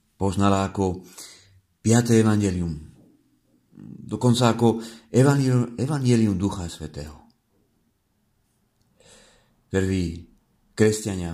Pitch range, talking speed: 90-115 Hz, 60 wpm